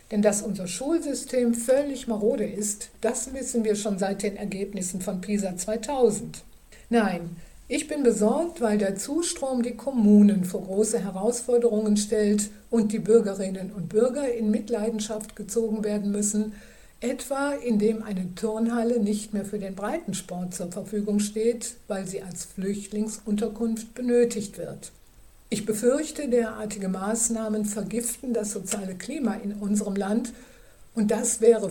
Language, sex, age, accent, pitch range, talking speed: German, female, 60-79, German, 205-235 Hz, 135 wpm